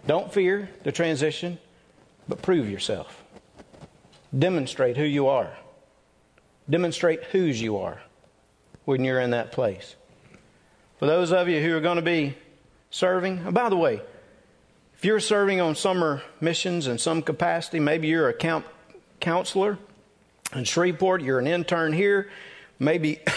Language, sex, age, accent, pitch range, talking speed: English, male, 40-59, American, 145-185 Hz, 140 wpm